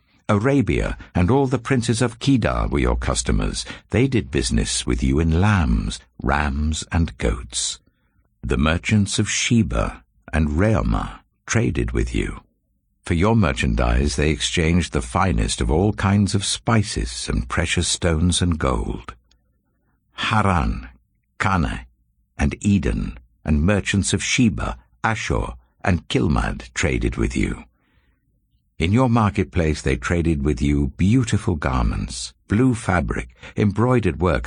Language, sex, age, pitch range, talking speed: English, male, 60-79, 65-100 Hz, 125 wpm